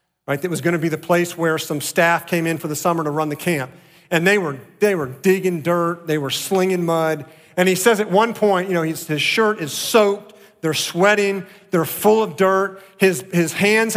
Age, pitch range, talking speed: 40-59, 145-195 Hz, 225 wpm